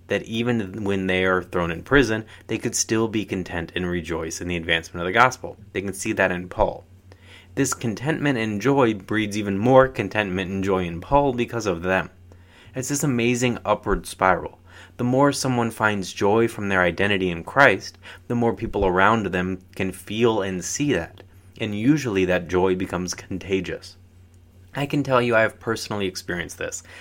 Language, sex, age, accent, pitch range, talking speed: English, male, 30-49, American, 90-115 Hz, 180 wpm